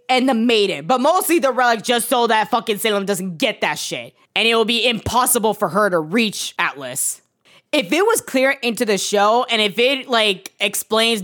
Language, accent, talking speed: English, American, 205 wpm